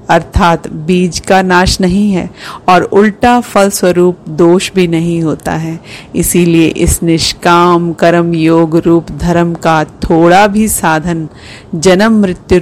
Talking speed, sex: 135 wpm, female